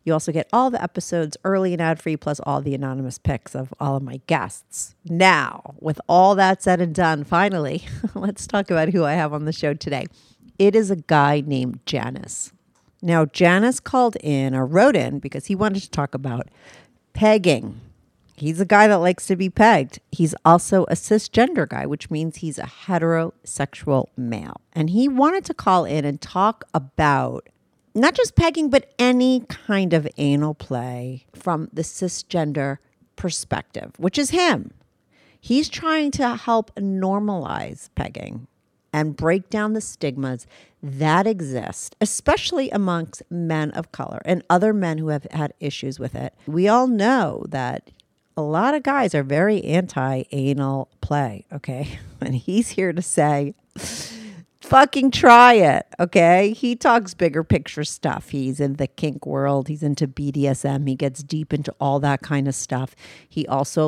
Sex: female